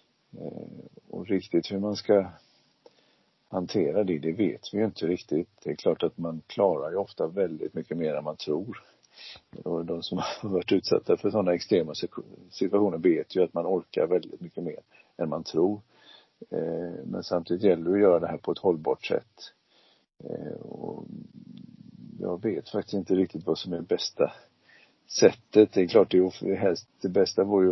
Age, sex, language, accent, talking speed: 50-69, male, Swedish, native, 175 wpm